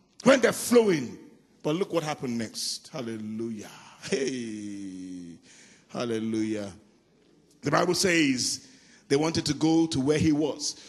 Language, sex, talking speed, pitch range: English, male, 120 wpm, 150-235 Hz